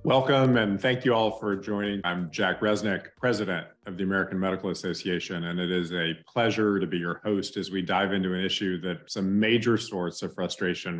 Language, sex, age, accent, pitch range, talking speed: English, male, 40-59, American, 85-105 Hz, 200 wpm